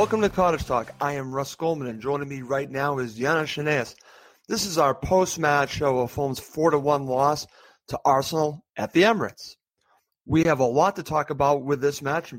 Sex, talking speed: male, 205 wpm